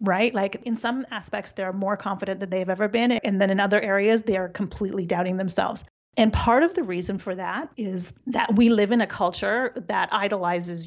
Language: English